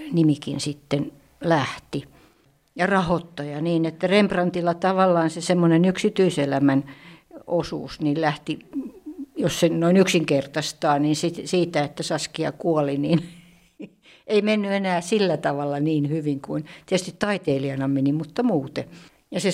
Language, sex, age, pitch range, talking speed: English, female, 60-79, 155-190 Hz, 125 wpm